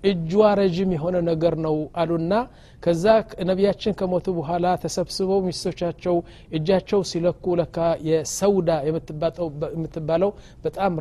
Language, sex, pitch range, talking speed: Amharic, male, 160-195 Hz, 105 wpm